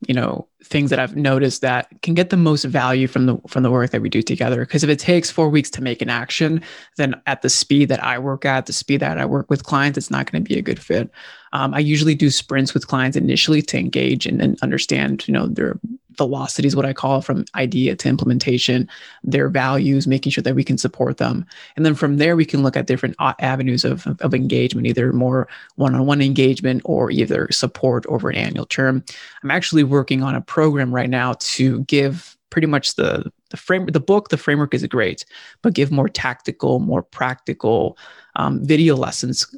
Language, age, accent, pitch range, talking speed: English, 20-39, American, 130-155 Hz, 220 wpm